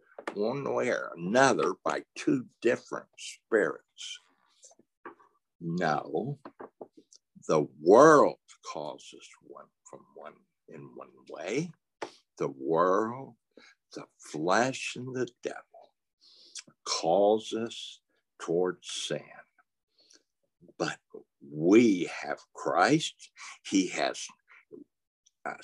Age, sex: 60-79, male